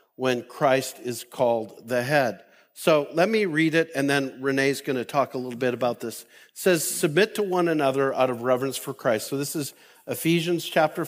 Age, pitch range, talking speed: 50-69, 125-150 Hz, 200 wpm